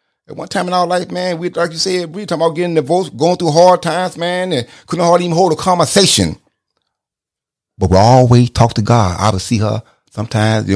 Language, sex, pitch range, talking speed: English, male, 100-145 Hz, 225 wpm